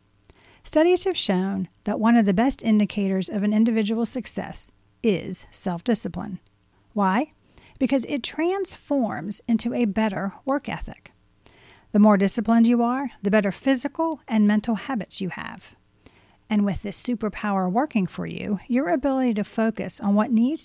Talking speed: 150 wpm